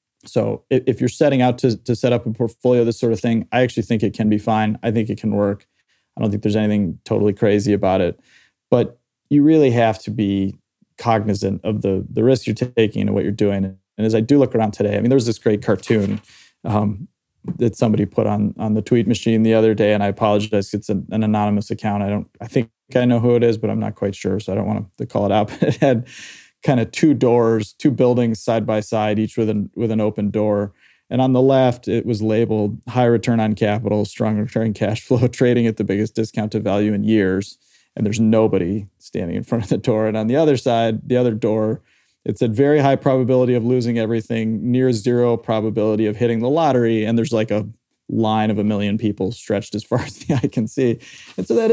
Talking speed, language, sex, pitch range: 235 wpm, English, male, 105-120 Hz